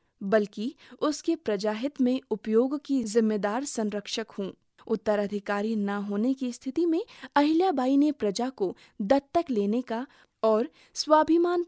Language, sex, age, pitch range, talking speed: Hindi, female, 20-39, 210-285 Hz, 125 wpm